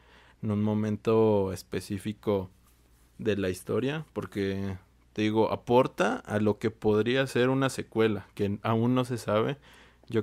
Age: 20-39